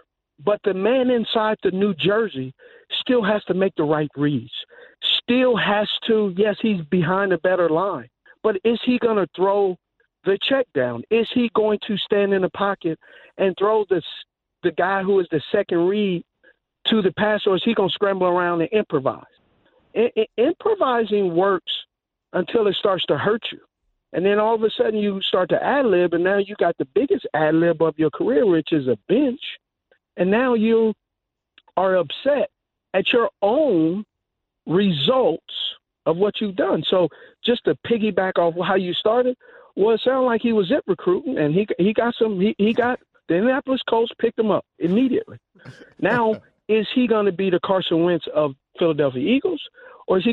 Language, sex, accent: English, male, American